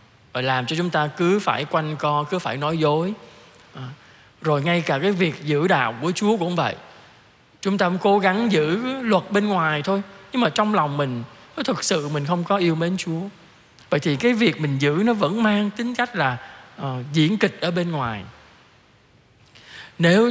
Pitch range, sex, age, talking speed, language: 145-195 Hz, male, 20-39, 200 wpm, Vietnamese